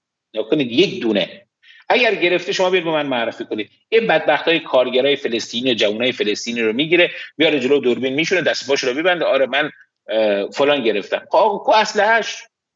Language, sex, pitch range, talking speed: Persian, male, 170-215 Hz, 155 wpm